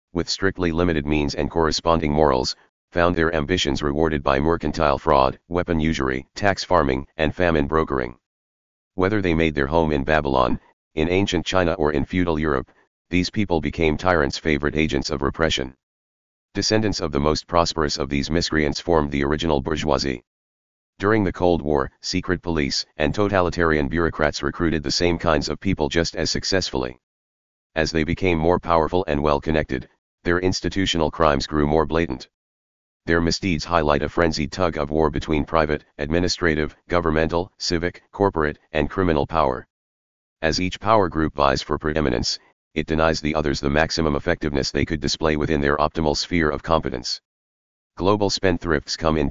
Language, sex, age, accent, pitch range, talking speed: English, male, 40-59, American, 70-85 Hz, 160 wpm